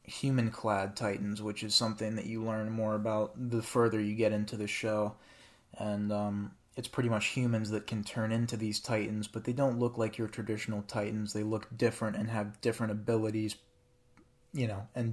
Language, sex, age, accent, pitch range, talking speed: English, male, 20-39, American, 105-115 Hz, 185 wpm